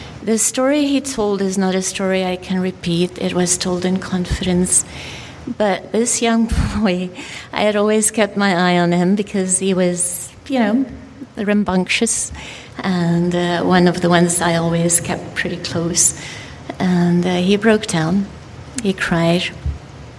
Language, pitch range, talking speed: English, 175-200 Hz, 155 wpm